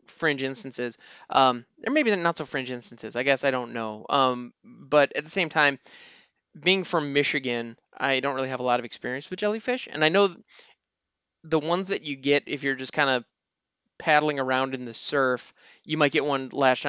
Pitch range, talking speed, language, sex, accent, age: 130-170 Hz, 205 wpm, English, male, American, 20-39